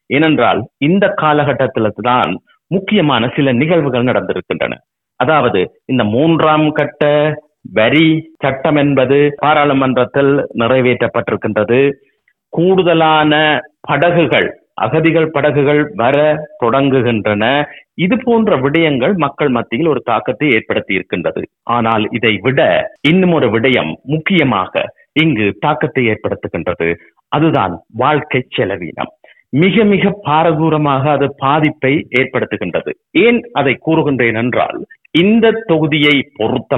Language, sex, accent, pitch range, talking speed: Tamil, male, native, 130-165 Hz, 90 wpm